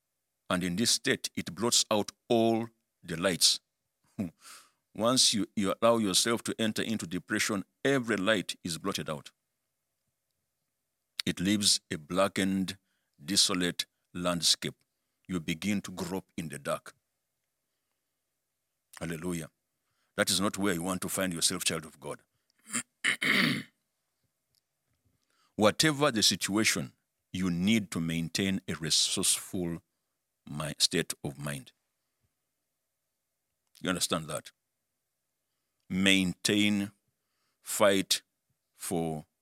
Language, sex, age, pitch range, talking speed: English, male, 60-79, 85-110 Hz, 105 wpm